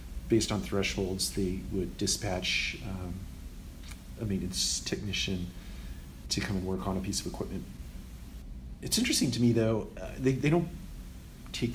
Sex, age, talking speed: male, 40-59, 150 wpm